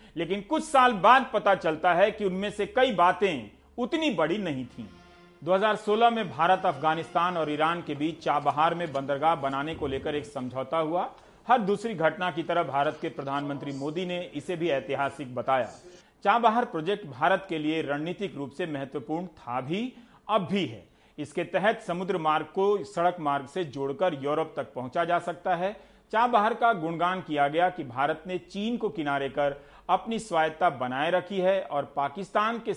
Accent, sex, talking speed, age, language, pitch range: native, male, 155 wpm, 40-59, Hindi, 145-195 Hz